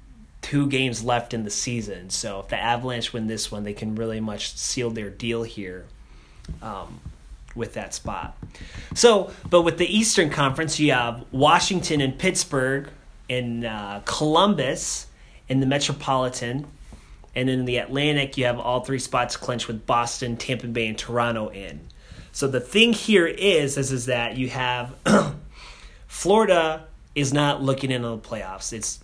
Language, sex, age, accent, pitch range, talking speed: English, male, 30-49, American, 115-145 Hz, 160 wpm